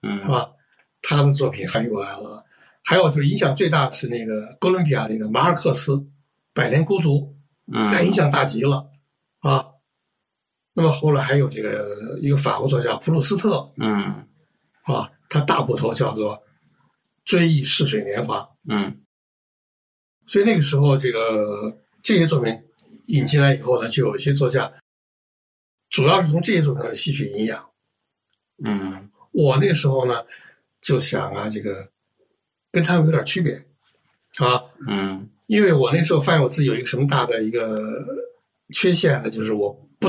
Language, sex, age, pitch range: Chinese, male, 60-79, 120-160 Hz